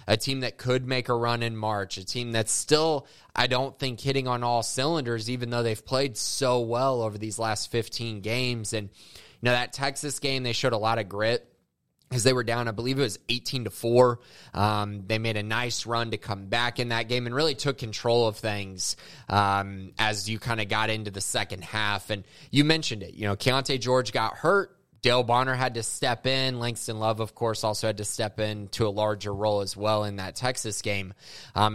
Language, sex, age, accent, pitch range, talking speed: English, male, 20-39, American, 105-125 Hz, 225 wpm